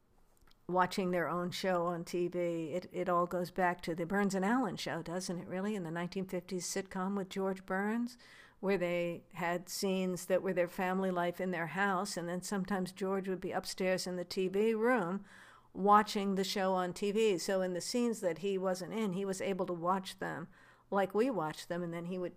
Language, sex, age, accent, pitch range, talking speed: English, female, 50-69, American, 175-195 Hz, 205 wpm